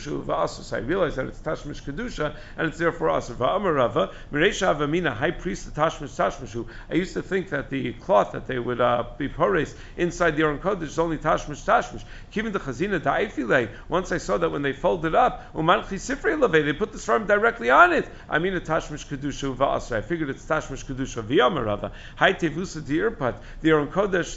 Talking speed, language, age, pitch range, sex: 190 wpm, English, 50-69, 140-180 Hz, male